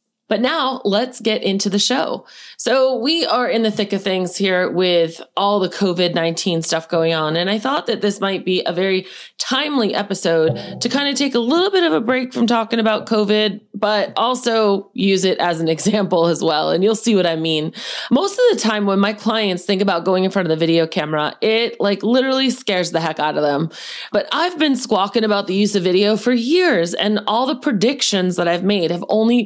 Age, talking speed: 30-49, 220 wpm